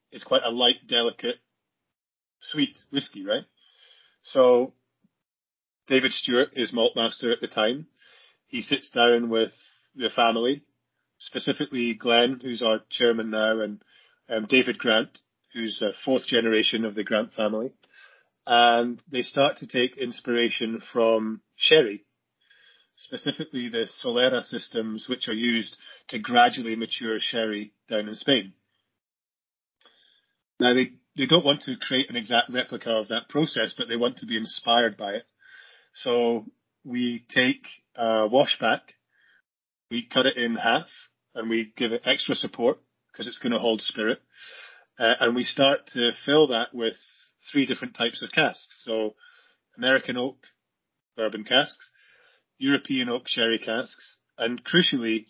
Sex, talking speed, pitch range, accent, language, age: male, 140 wpm, 110-130 Hz, British, Hebrew, 30-49